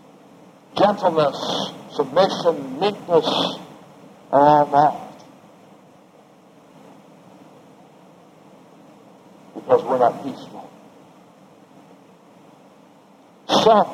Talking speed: 45 wpm